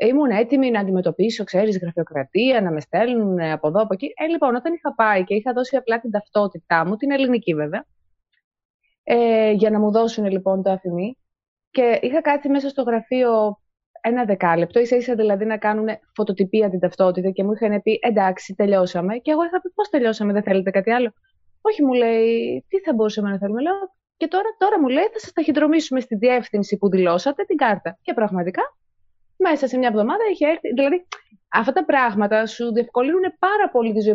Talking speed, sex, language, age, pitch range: 190 wpm, female, Greek, 20-39, 195-265 Hz